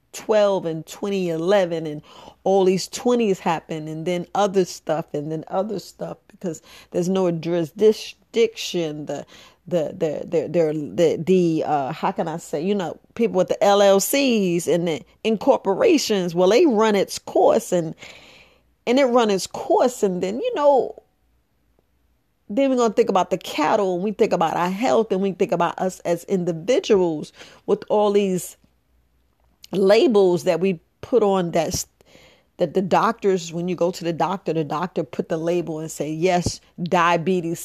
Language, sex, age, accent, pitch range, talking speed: English, female, 40-59, American, 170-215 Hz, 165 wpm